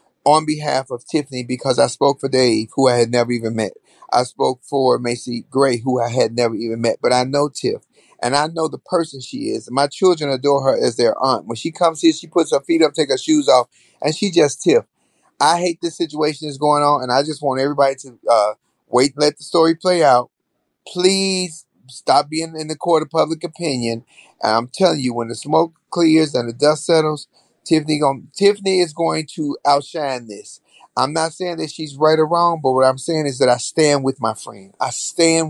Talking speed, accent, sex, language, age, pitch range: 220 wpm, American, male, English, 30-49, 125-165 Hz